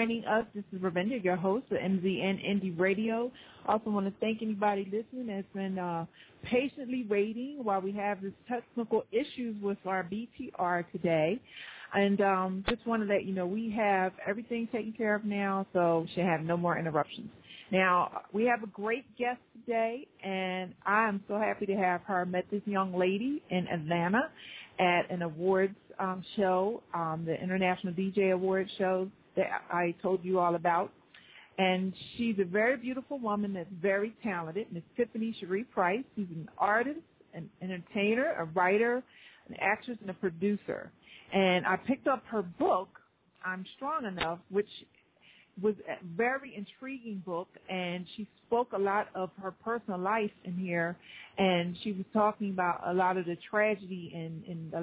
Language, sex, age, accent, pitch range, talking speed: English, female, 40-59, American, 185-220 Hz, 170 wpm